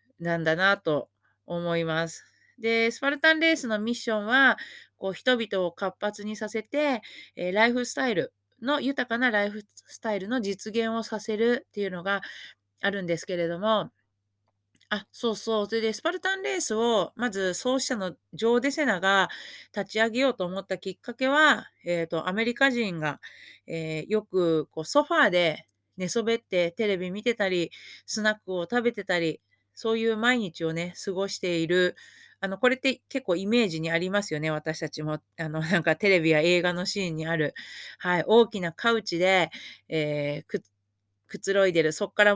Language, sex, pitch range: Japanese, female, 165-225 Hz